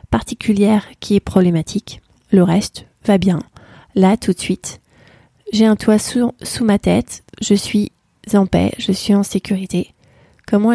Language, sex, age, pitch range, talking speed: French, female, 30-49, 190-220 Hz, 155 wpm